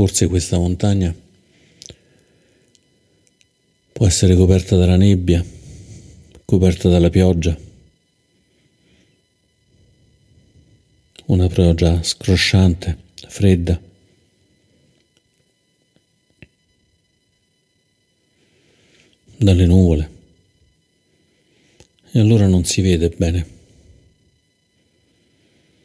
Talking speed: 55 wpm